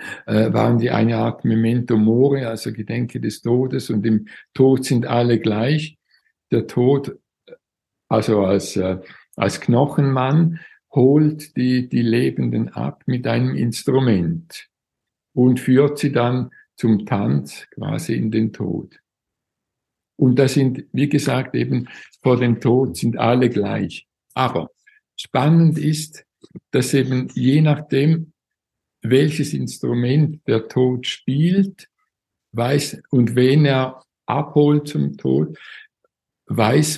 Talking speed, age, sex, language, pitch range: 115 wpm, 60-79, male, German, 115-140 Hz